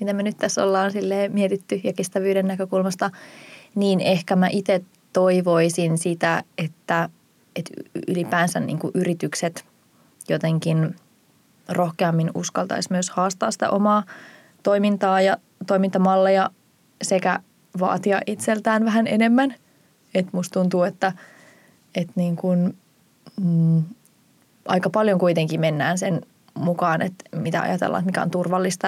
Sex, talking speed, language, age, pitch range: female, 105 wpm, Finnish, 20-39, 175-195 Hz